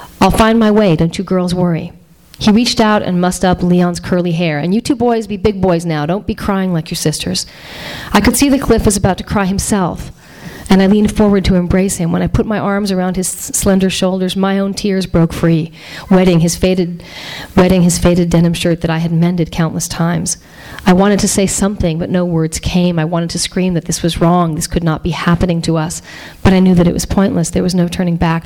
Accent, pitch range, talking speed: American, 165-185 Hz, 235 wpm